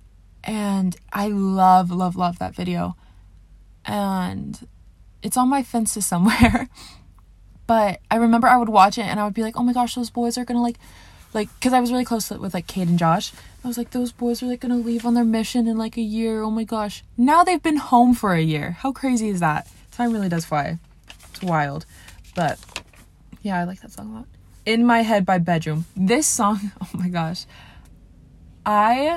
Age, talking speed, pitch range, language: 20-39, 205 wpm, 165-230 Hz, English